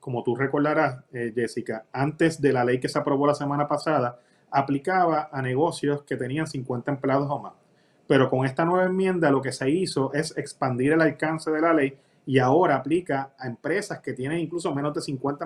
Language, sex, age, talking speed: Spanish, male, 30-49, 195 wpm